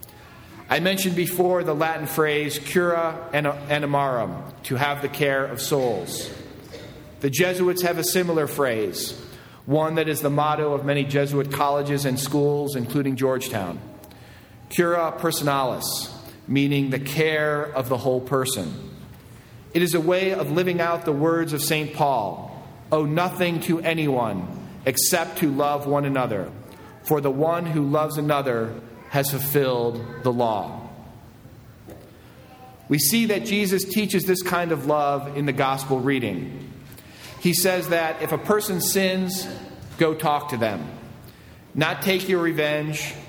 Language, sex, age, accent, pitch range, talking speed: English, male, 40-59, American, 130-165 Hz, 140 wpm